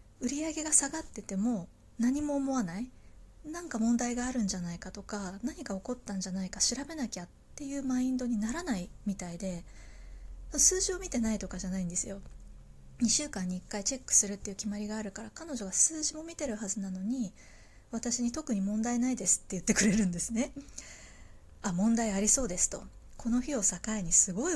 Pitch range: 190-255 Hz